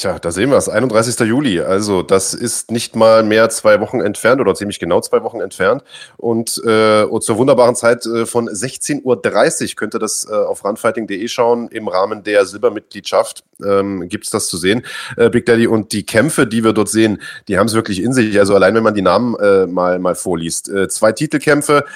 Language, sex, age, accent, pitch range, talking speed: German, male, 30-49, German, 110-130 Hz, 210 wpm